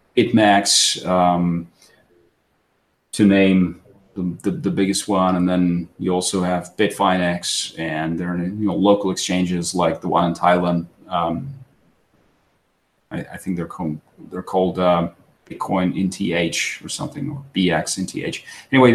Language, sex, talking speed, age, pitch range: English, male, 145 wpm, 30-49, 90-115 Hz